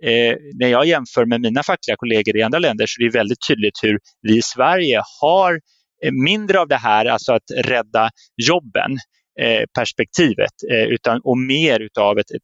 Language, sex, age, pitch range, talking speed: Swedish, male, 30-49, 120-160 Hz, 180 wpm